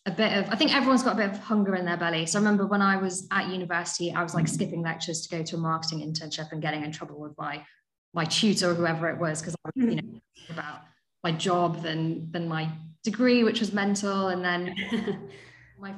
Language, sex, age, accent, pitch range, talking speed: English, female, 20-39, British, 170-200 Hz, 235 wpm